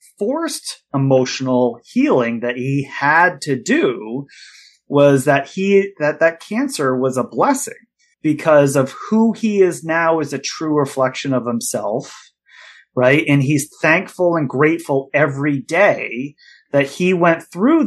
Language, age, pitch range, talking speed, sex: English, 30-49, 130-170 Hz, 140 wpm, male